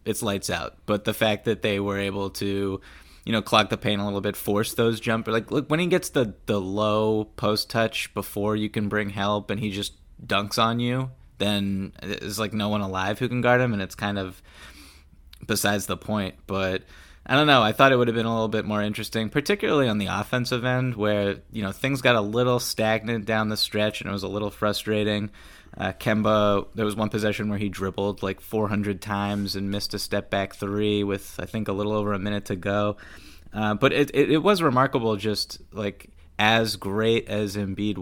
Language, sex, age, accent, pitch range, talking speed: English, male, 20-39, American, 100-115 Hz, 220 wpm